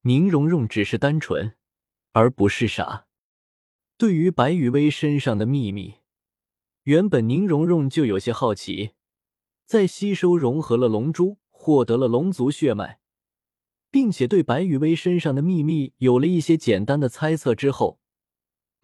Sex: male